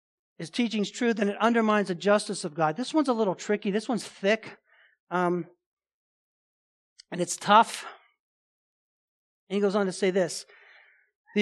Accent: American